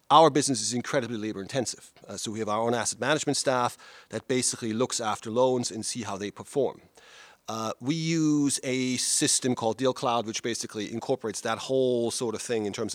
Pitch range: 110-140 Hz